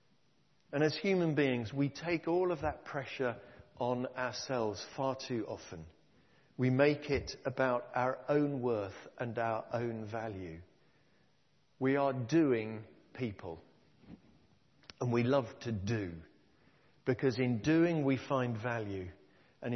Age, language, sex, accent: 50-69, English, male, British